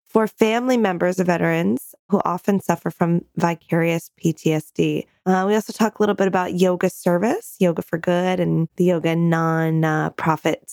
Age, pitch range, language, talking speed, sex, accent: 20-39, 165-205 Hz, English, 155 wpm, female, American